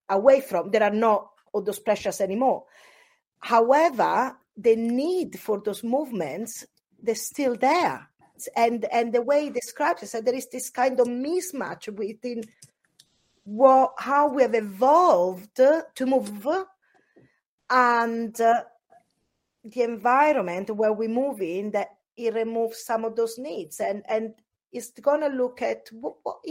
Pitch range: 220-275 Hz